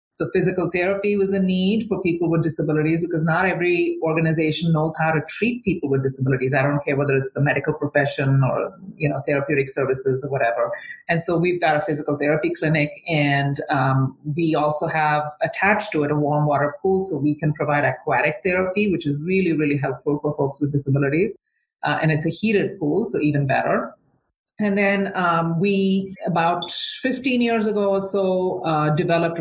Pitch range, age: 145-180 Hz, 30-49